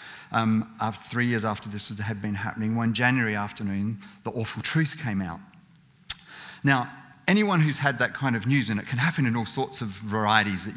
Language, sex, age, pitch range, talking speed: English, male, 40-59, 115-150 Hz, 195 wpm